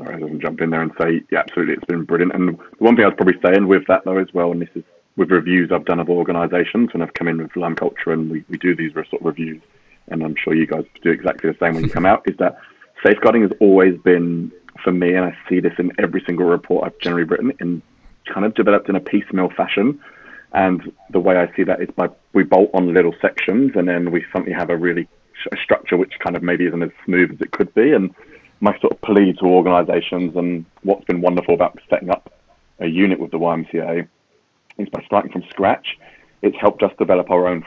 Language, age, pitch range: English, 30-49, 85-90 Hz